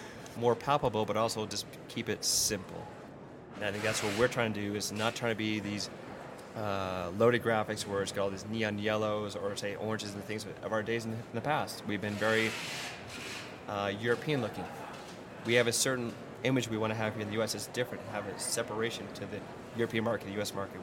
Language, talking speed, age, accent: English, 215 wpm, 20-39, American